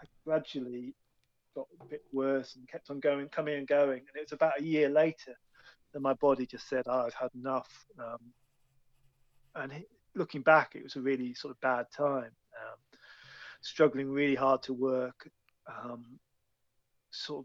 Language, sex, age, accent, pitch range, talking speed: English, male, 30-49, British, 130-150 Hz, 165 wpm